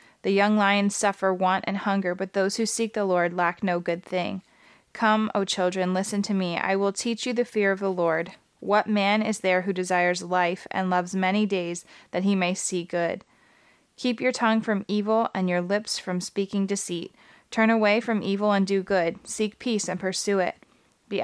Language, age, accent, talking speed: English, 20-39, American, 205 wpm